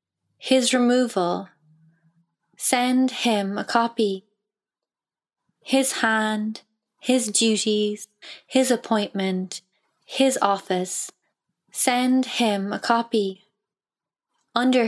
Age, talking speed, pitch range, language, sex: 20-39, 75 wpm, 195-235 Hz, English, female